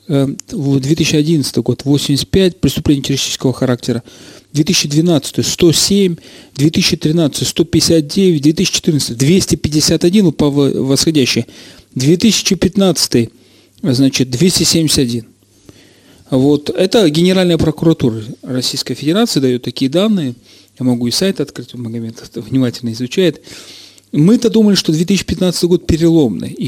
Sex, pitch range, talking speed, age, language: male, 130-170 Hz, 90 wpm, 40-59, Russian